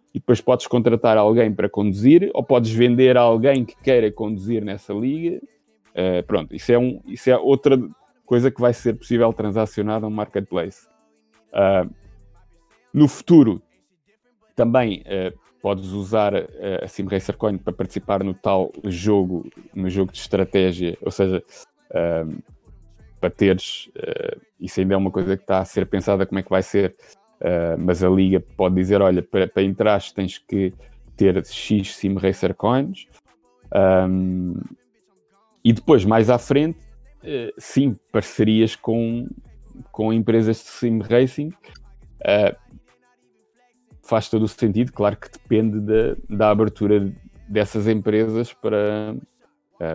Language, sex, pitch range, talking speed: Portuguese, male, 95-115 Hz, 145 wpm